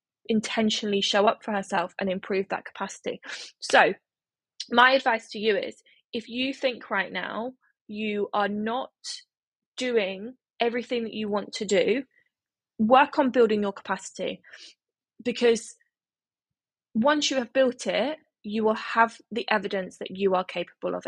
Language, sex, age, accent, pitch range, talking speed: English, female, 20-39, British, 205-255 Hz, 145 wpm